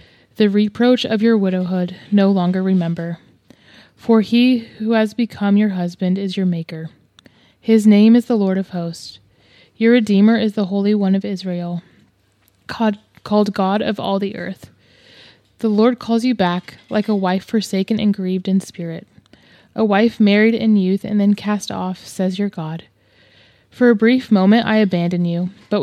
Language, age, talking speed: English, 20-39, 165 wpm